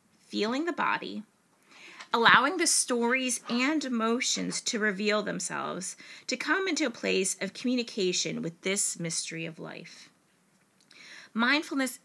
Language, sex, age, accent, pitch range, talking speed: English, female, 30-49, American, 200-245 Hz, 120 wpm